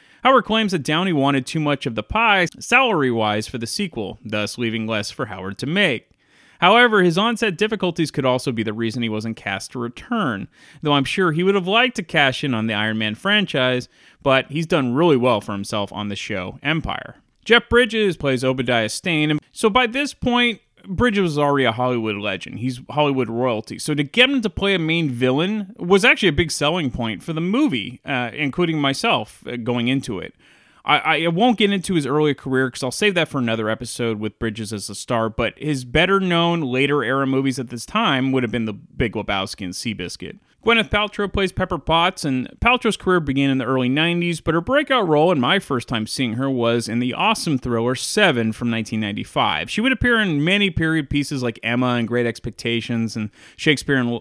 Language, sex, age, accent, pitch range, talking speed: English, male, 30-49, American, 120-180 Hz, 205 wpm